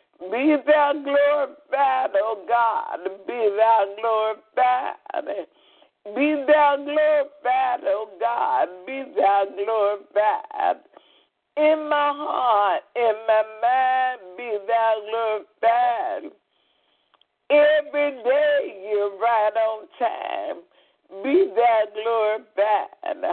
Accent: American